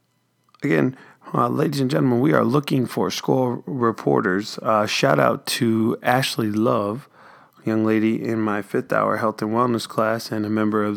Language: English